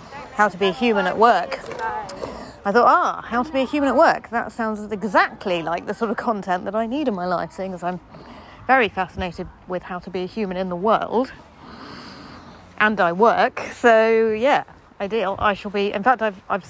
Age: 30-49